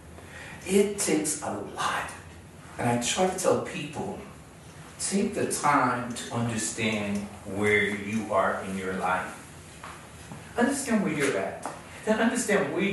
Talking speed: 130 wpm